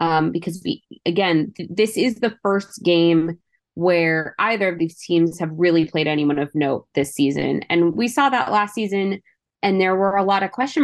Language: English